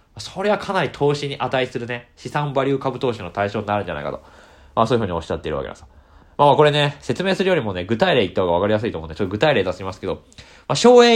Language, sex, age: Japanese, male, 20-39